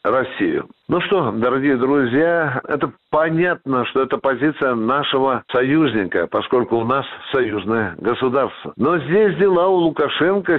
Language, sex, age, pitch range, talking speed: Russian, male, 60-79, 135-175 Hz, 125 wpm